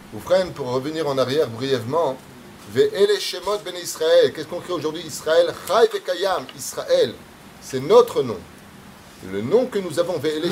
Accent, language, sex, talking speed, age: French, French, male, 135 wpm, 30-49